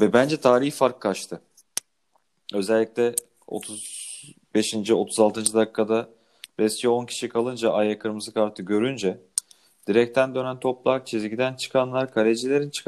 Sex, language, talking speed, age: male, Turkish, 105 wpm, 40-59